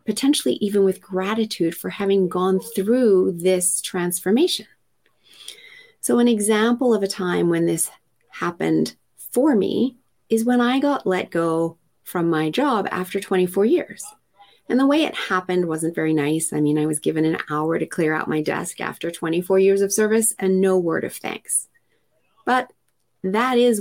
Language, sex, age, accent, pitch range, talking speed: English, female, 30-49, American, 180-245 Hz, 165 wpm